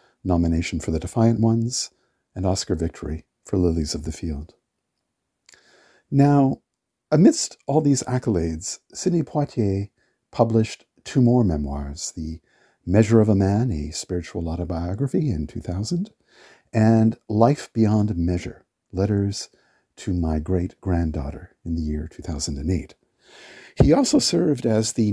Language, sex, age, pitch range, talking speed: English, male, 50-69, 85-115 Hz, 120 wpm